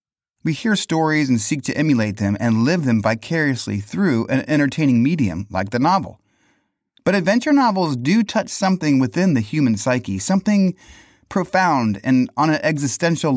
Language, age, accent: English, 30-49, American